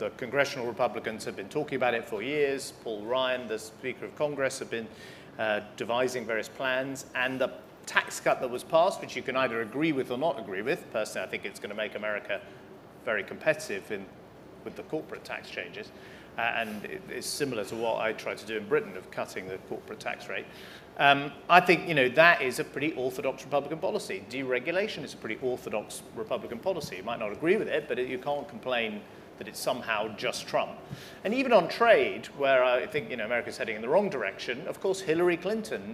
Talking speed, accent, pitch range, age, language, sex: 215 wpm, British, 120-165 Hz, 40-59, English, male